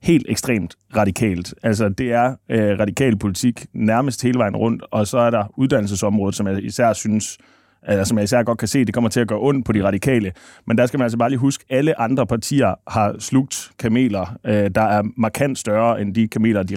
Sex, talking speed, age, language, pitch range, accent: male, 210 wpm, 30-49, Danish, 105-120 Hz, native